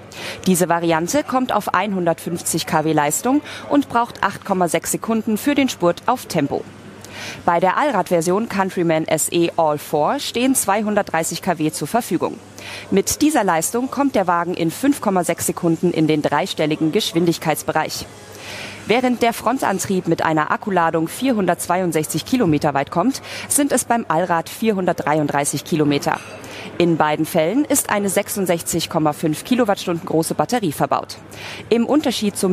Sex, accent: female, German